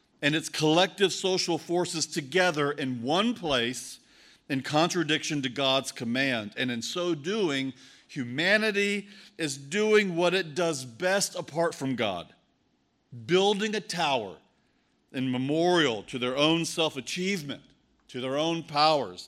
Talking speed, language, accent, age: 130 wpm, English, American, 50-69